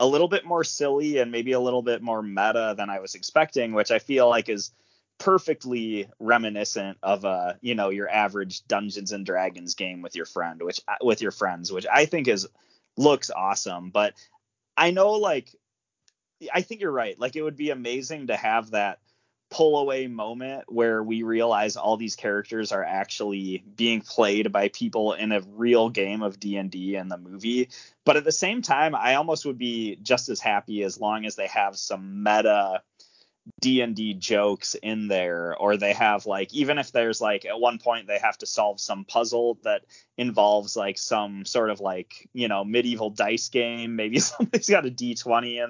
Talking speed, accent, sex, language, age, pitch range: 190 wpm, American, male, English, 20-39, 105-140 Hz